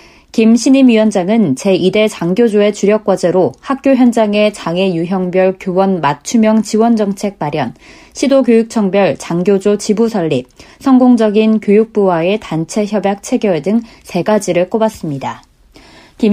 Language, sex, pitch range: Korean, female, 185-225 Hz